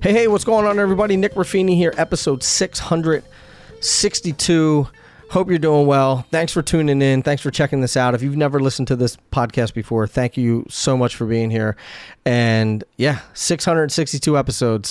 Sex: male